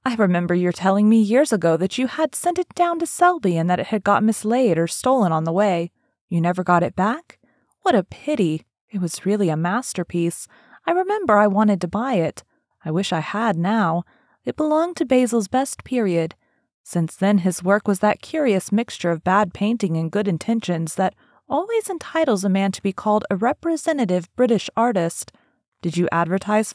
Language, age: English, 30-49